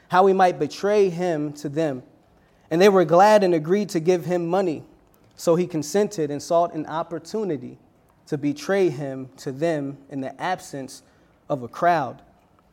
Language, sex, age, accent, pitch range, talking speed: English, male, 20-39, American, 165-195 Hz, 165 wpm